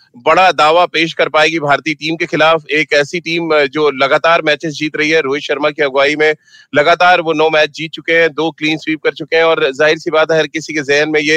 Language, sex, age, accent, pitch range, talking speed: Hindi, male, 30-49, native, 150-170 Hz, 125 wpm